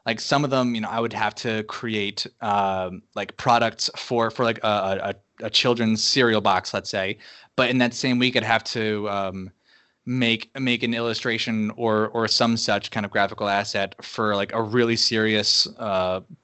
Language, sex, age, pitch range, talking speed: English, male, 20-39, 110-130 Hz, 190 wpm